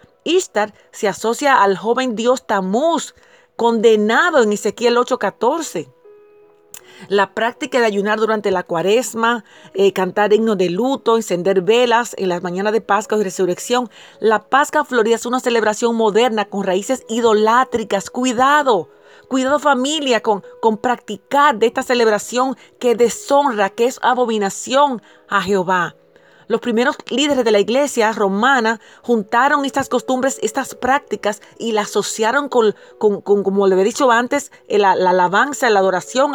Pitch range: 200-255 Hz